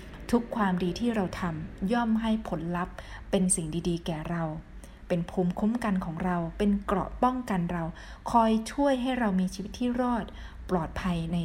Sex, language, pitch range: female, Thai, 175-225 Hz